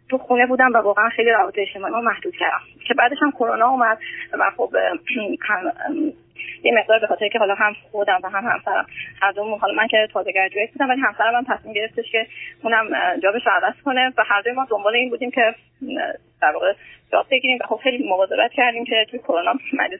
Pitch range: 205-280 Hz